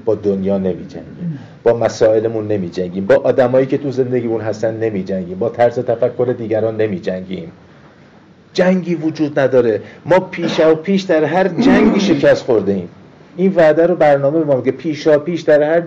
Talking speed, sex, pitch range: 165 wpm, male, 115-165 Hz